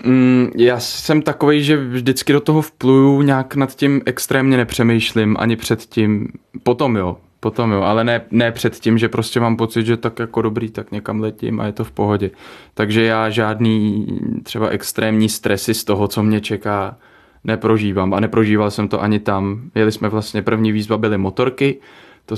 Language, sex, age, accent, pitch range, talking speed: Czech, male, 20-39, native, 105-115 Hz, 180 wpm